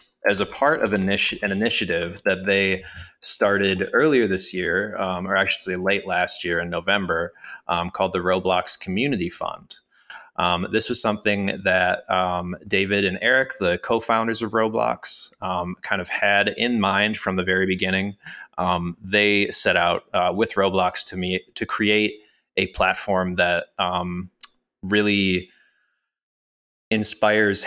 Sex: male